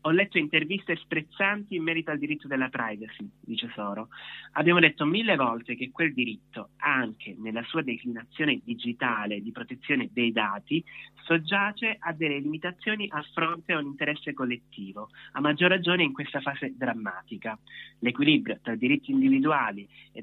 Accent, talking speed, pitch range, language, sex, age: native, 150 wpm, 130-165 Hz, Italian, male, 30-49